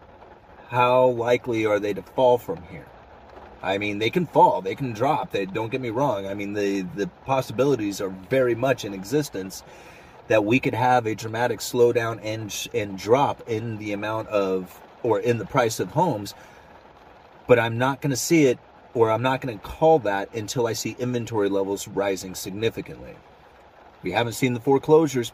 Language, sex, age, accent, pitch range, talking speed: English, male, 30-49, American, 100-125 Hz, 180 wpm